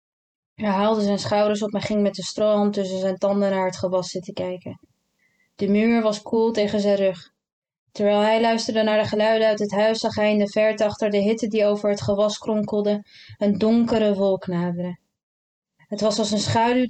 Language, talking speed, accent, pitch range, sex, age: Dutch, 200 wpm, Dutch, 190-215 Hz, female, 20-39